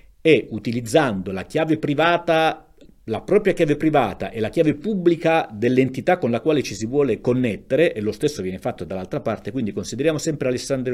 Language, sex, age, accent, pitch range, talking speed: Italian, male, 50-69, native, 110-160 Hz, 170 wpm